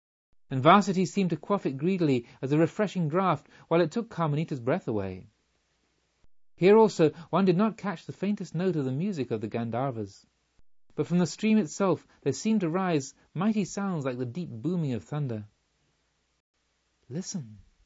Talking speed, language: 170 wpm, English